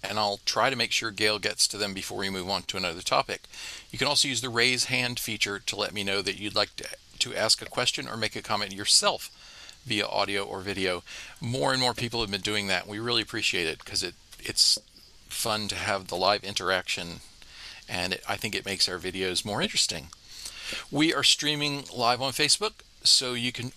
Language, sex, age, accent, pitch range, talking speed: English, male, 40-59, American, 100-125 Hz, 215 wpm